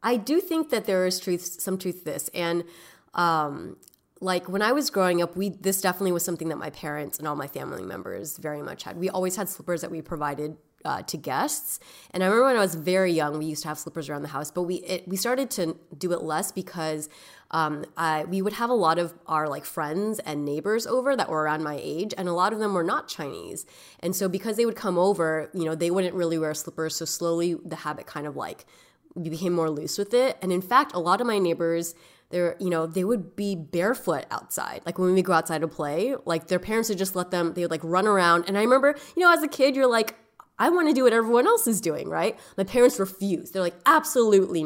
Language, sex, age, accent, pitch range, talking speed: English, female, 20-39, American, 160-205 Hz, 250 wpm